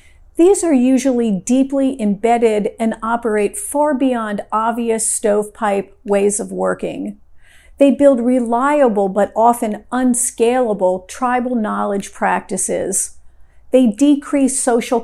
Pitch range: 210-255 Hz